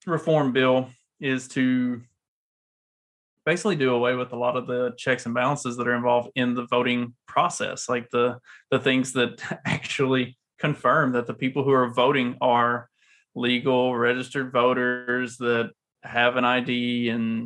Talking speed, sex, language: 150 wpm, male, English